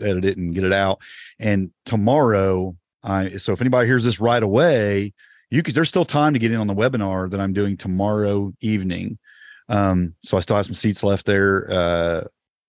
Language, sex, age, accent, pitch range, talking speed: English, male, 40-59, American, 95-120 Hz, 200 wpm